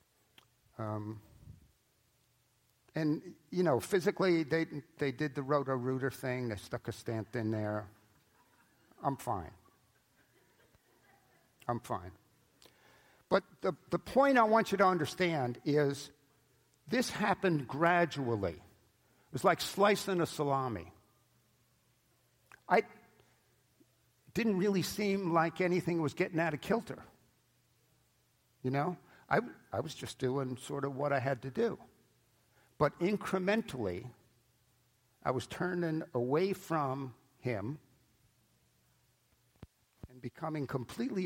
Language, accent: English, American